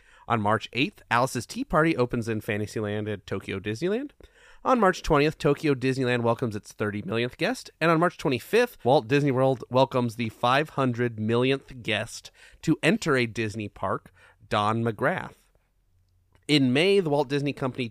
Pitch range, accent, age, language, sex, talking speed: 110-145 Hz, American, 30-49, English, male, 160 wpm